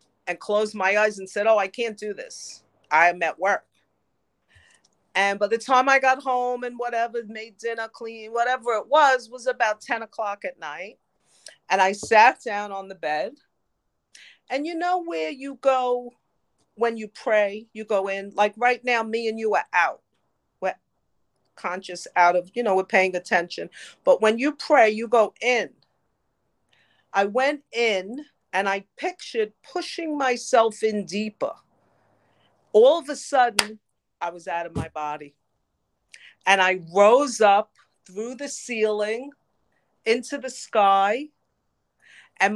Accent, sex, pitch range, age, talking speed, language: American, female, 195-255 Hz, 40-59, 155 wpm, English